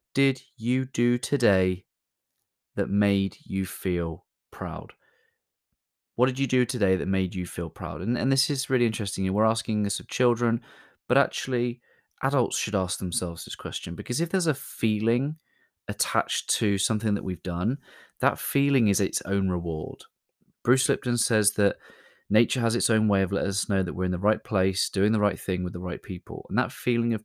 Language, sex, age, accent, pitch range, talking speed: English, male, 20-39, British, 95-120 Hz, 190 wpm